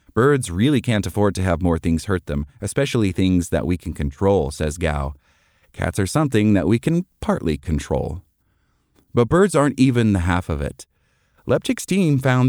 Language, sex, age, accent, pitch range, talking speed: English, male, 30-49, American, 95-135 Hz, 180 wpm